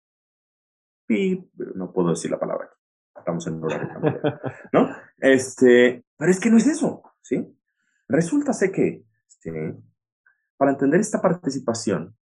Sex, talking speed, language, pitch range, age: male, 135 wpm, Spanish, 95-150 Hz, 30-49